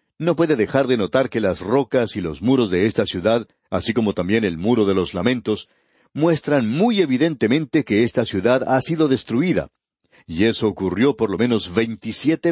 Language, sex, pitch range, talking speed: Spanish, male, 105-140 Hz, 180 wpm